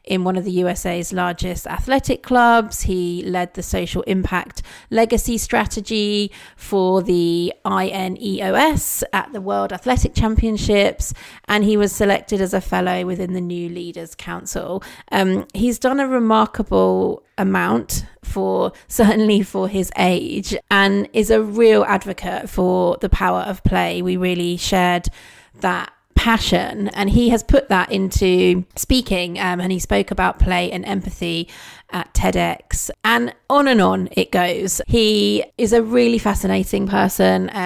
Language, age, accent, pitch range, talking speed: English, 30-49, British, 170-210 Hz, 145 wpm